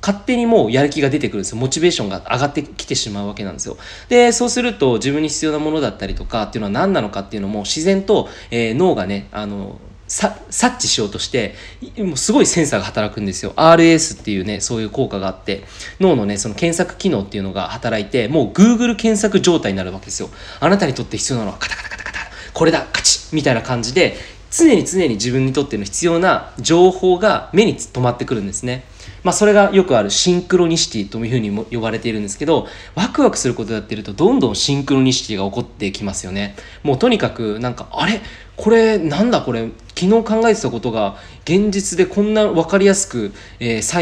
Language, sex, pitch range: Japanese, male, 105-155 Hz